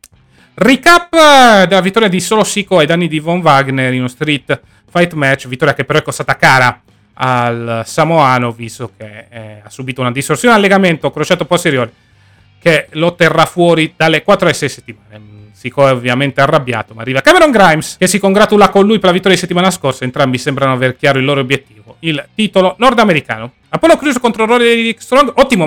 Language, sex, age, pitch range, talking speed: Italian, male, 30-49, 135-195 Hz, 185 wpm